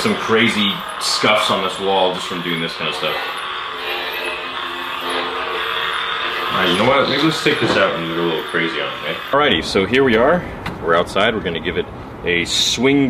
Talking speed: 190 wpm